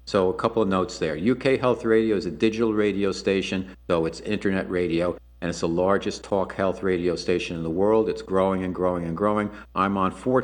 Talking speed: 220 wpm